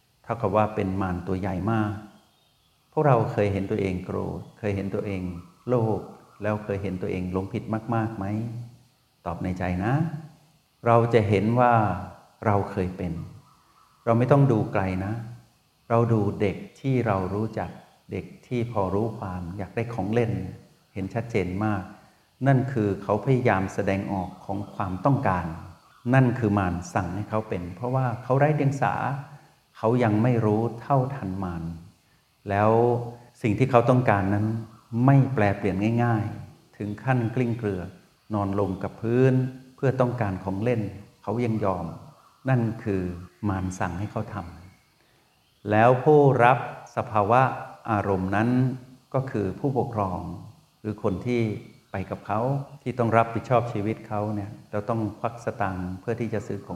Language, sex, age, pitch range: Thai, male, 60-79, 100-125 Hz